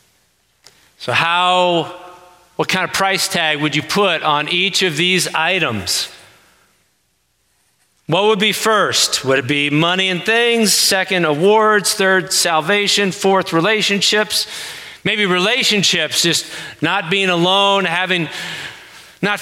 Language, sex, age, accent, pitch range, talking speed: English, male, 40-59, American, 165-195 Hz, 120 wpm